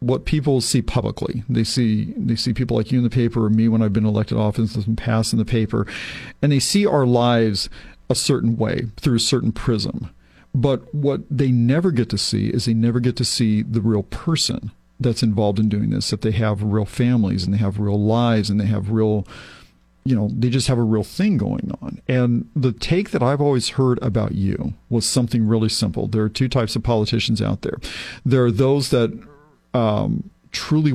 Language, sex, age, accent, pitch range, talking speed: English, male, 50-69, American, 110-130 Hz, 215 wpm